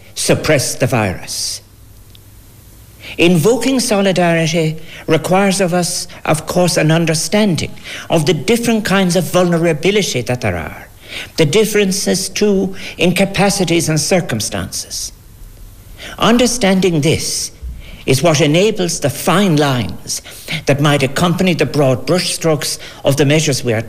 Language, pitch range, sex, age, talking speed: English, 110-175 Hz, male, 60-79, 120 wpm